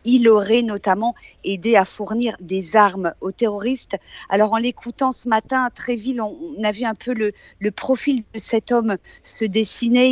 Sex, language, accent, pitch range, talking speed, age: female, French, French, 200-235 Hz, 180 wpm, 50-69